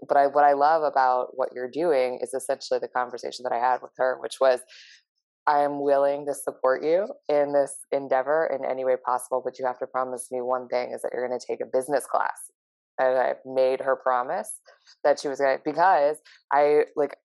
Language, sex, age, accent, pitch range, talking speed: English, female, 20-39, American, 130-145 Hz, 210 wpm